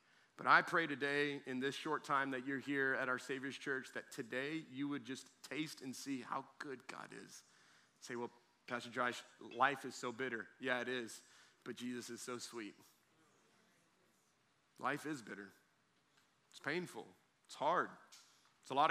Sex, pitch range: male, 120-145 Hz